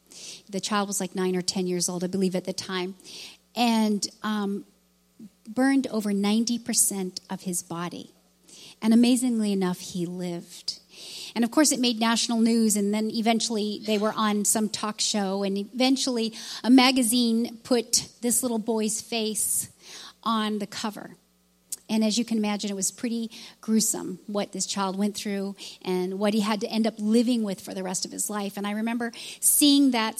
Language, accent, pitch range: English, American, 190-230 Hz